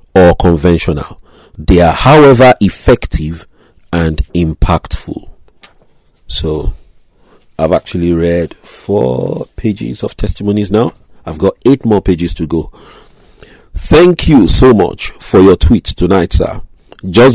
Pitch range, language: 80-100 Hz, English